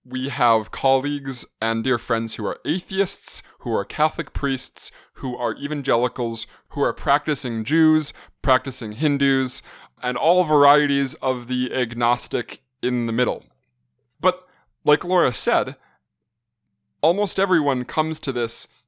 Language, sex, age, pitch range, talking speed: English, male, 20-39, 115-140 Hz, 125 wpm